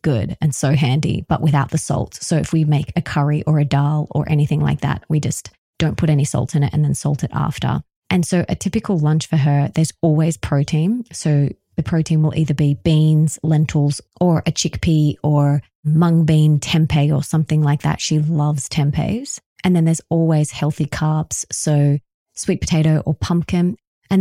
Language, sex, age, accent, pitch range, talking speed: English, female, 20-39, Australian, 145-165 Hz, 195 wpm